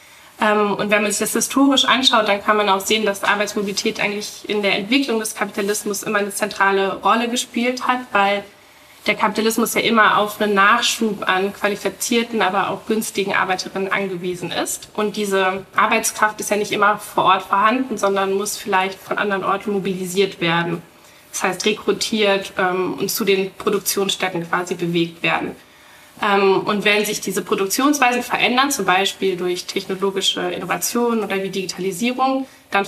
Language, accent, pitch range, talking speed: German, German, 195-215 Hz, 155 wpm